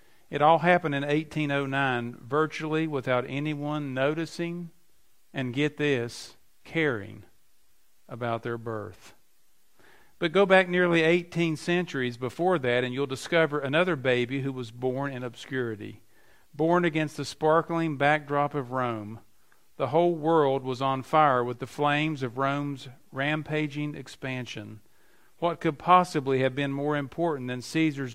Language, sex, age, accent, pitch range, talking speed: English, male, 50-69, American, 125-160 Hz, 135 wpm